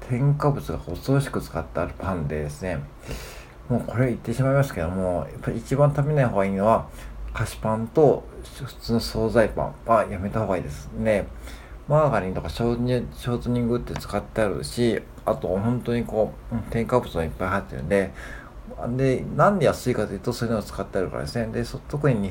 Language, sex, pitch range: Japanese, male, 90-130 Hz